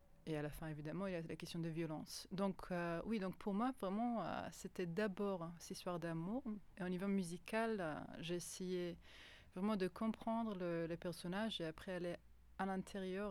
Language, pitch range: French, 165-205 Hz